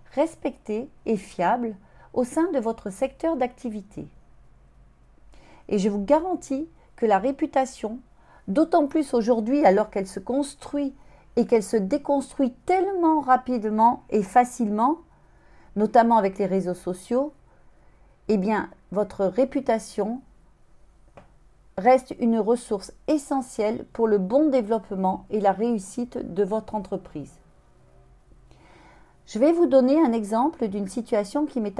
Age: 40-59